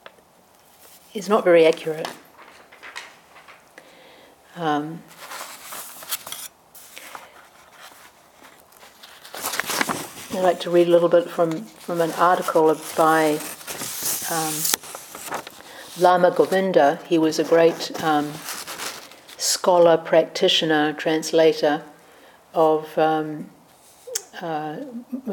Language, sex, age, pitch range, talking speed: English, female, 50-69, 155-180 Hz, 70 wpm